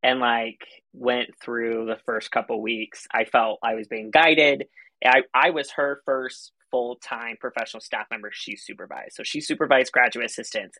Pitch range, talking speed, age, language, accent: 120-140 Hz, 165 wpm, 20-39, English, American